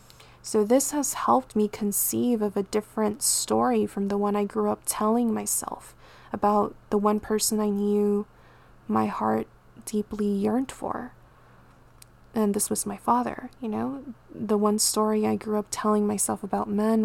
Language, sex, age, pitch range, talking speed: English, female, 20-39, 205-220 Hz, 160 wpm